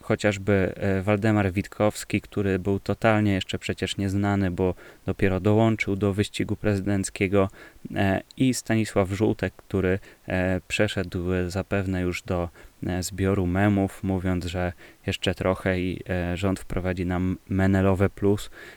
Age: 20-39